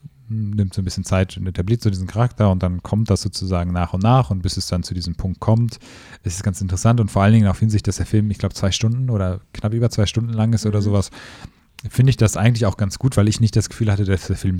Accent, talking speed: German, 280 wpm